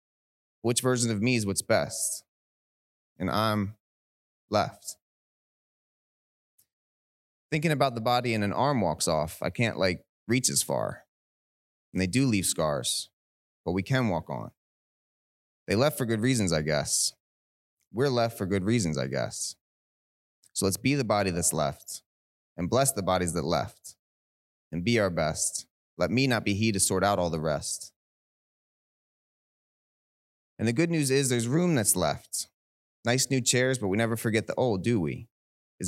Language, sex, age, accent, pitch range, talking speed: English, male, 20-39, American, 85-120 Hz, 165 wpm